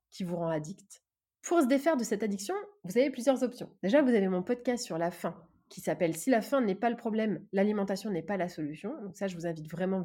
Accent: French